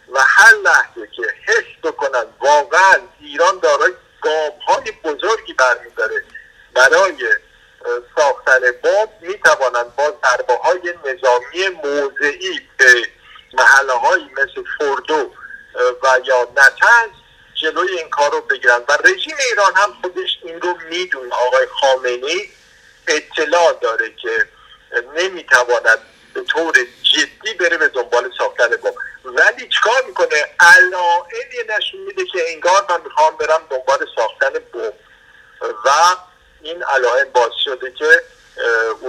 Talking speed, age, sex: 115 wpm, 50-69, male